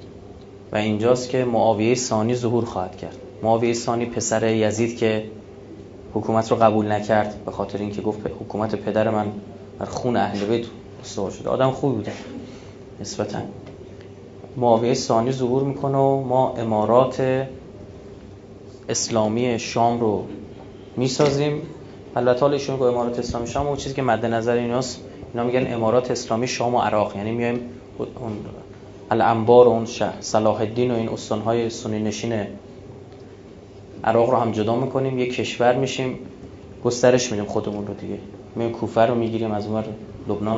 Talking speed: 150 wpm